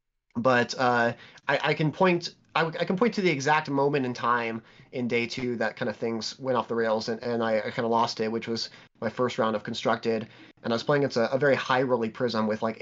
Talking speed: 255 wpm